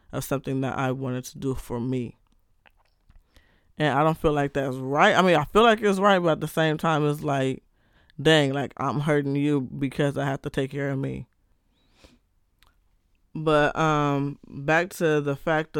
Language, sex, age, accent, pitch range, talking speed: English, male, 20-39, American, 130-155 Hz, 185 wpm